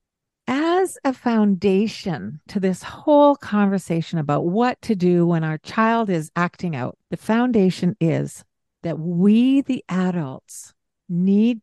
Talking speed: 125 wpm